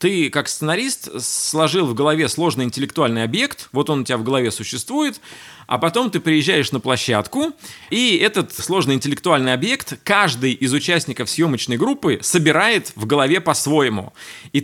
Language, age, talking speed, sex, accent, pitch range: Russian, 20-39, 150 wpm, male, native, 125-175 Hz